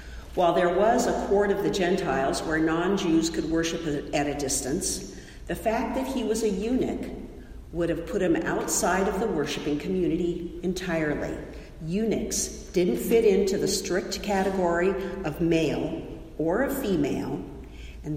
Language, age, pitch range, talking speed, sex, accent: English, 50-69, 155-200 Hz, 150 wpm, female, American